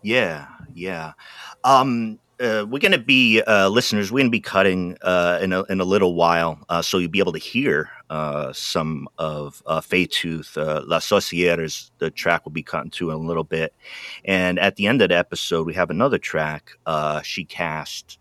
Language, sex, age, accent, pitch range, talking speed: English, male, 30-49, American, 80-100 Hz, 195 wpm